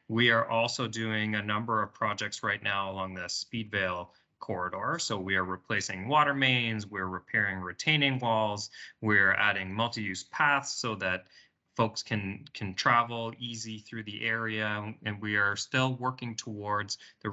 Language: English